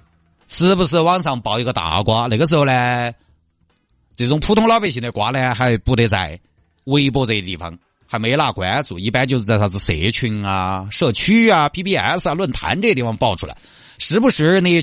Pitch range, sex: 105-155 Hz, male